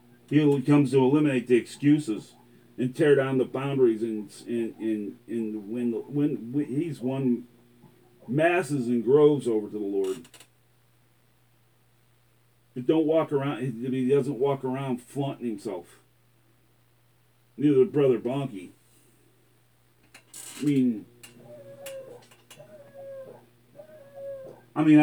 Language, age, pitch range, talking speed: English, 40-59, 120-150 Hz, 110 wpm